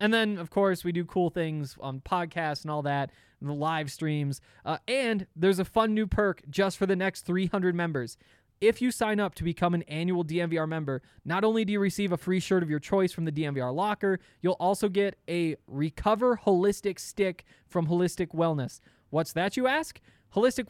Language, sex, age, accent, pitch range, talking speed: English, male, 20-39, American, 155-195 Hz, 200 wpm